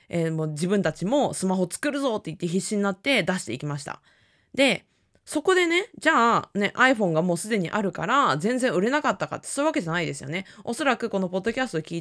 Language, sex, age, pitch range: Japanese, female, 20-39, 160-240 Hz